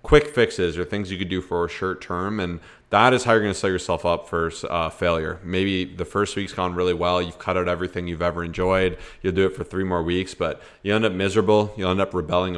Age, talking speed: 30-49, 260 wpm